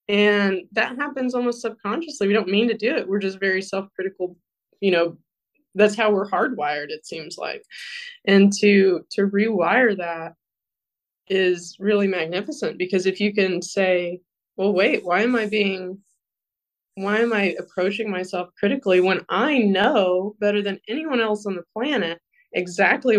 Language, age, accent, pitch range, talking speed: English, 20-39, American, 185-220 Hz, 155 wpm